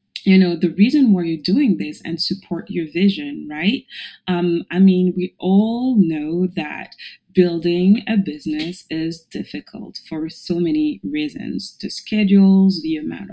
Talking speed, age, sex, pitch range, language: 150 wpm, 30-49, female, 165-210 Hz, English